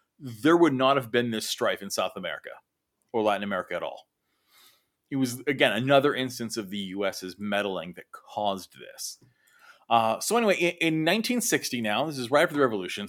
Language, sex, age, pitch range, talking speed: English, male, 30-49, 115-170 Hz, 180 wpm